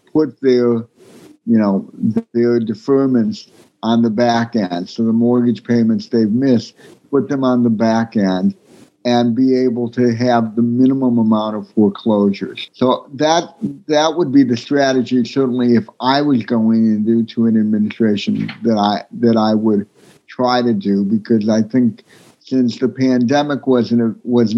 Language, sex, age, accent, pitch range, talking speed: English, male, 60-79, American, 110-130 Hz, 155 wpm